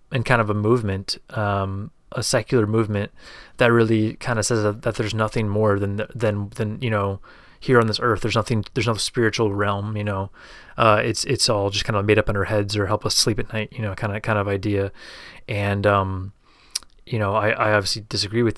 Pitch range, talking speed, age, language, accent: 100-115 Hz, 225 wpm, 30-49, English, American